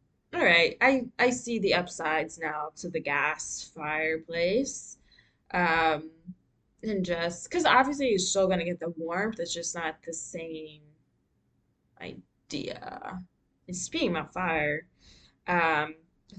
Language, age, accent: English, 20-39, American